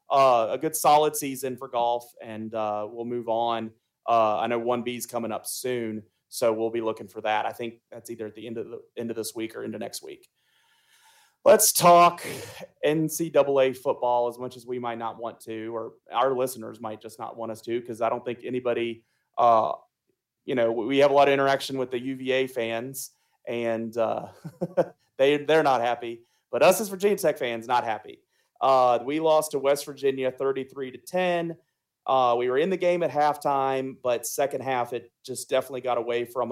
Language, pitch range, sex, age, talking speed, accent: English, 115-145 Hz, male, 30-49, 200 wpm, American